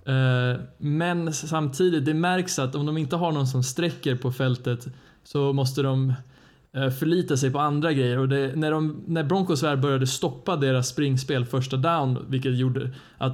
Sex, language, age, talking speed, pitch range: male, Swedish, 20-39, 170 wpm, 130-160 Hz